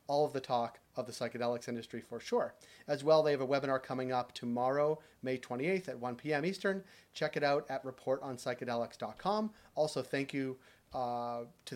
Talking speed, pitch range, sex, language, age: 180 wpm, 120-145 Hz, male, English, 30-49